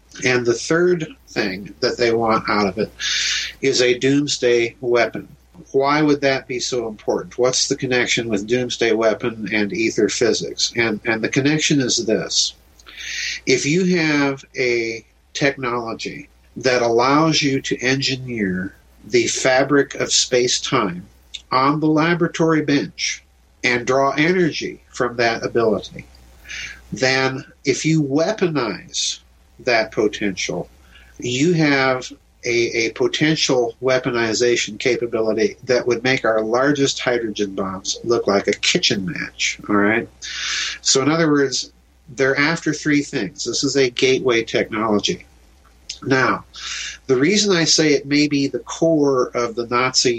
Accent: American